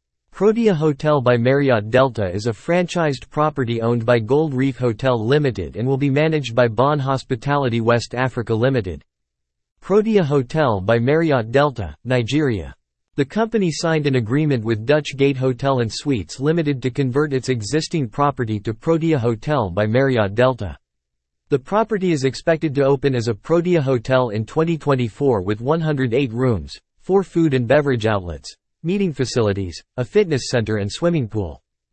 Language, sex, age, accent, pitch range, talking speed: English, male, 50-69, American, 115-150 Hz, 155 wpm